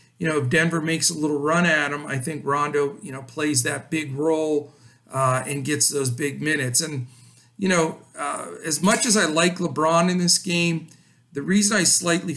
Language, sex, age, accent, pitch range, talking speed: English, male, 50-69, American, 130-170 Hz, 205 wpm